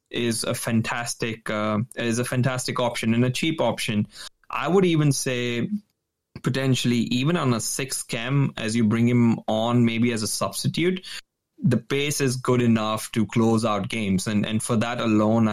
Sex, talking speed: male, 175 wpm